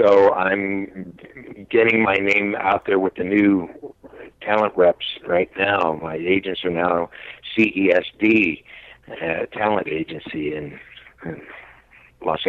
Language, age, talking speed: English, 60-79, 120 wpm